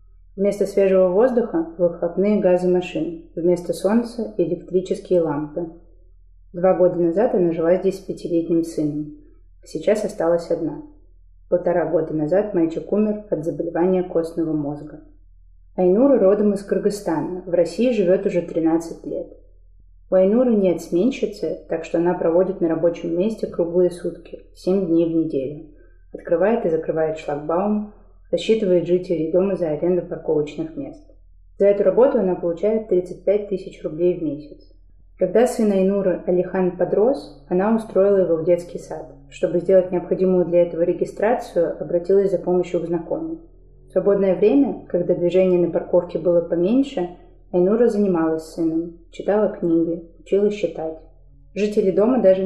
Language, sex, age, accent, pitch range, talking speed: Russian, female, 30-49, native, 165-190 Hz, 140 wpm